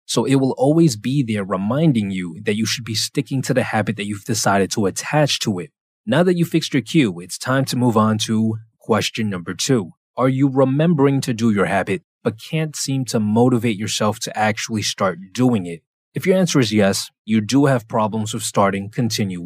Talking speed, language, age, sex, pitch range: 210 wpm, English, 20-39, male, 105-140 Hz